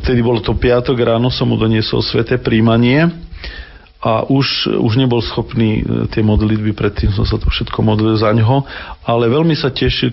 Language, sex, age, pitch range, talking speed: Slovak, male, 40-59, 105-120 Hz, 170 wpm